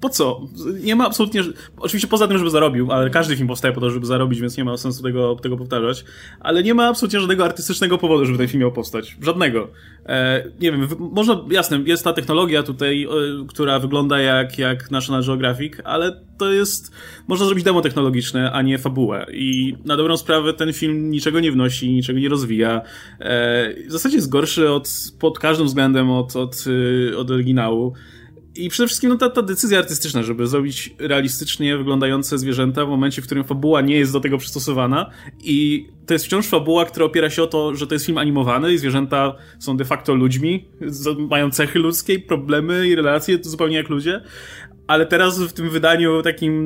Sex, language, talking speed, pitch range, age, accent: male, Polish, 190 wpm, 130-165 Hz, 20-39, native